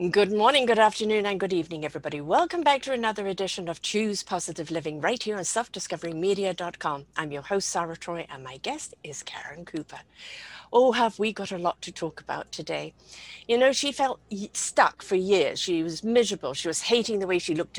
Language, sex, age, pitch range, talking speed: English, female, 50-69, 170-240 Hz, 200 wpm